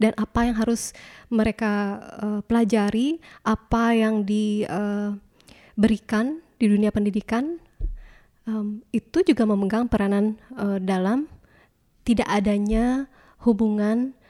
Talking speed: 100 wpm